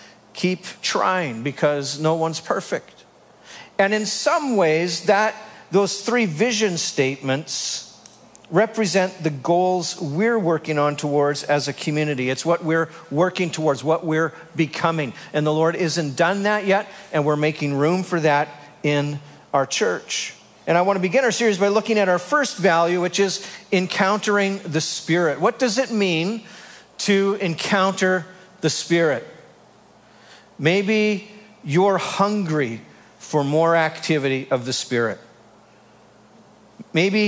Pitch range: 150-195 Hz